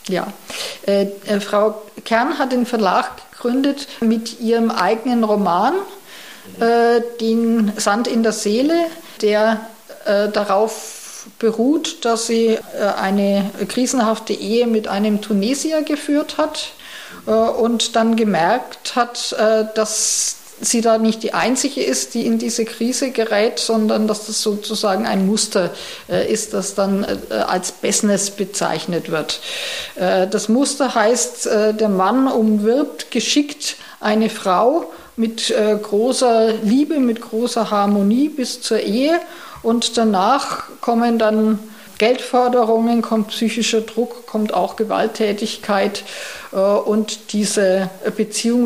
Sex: female